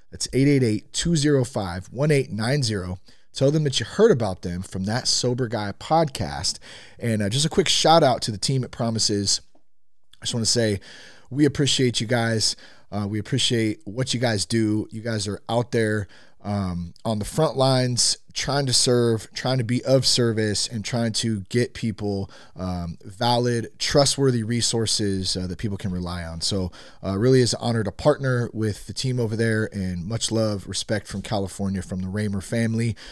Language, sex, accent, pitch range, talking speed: English, male, American, 100-125 Hz, 175 wpm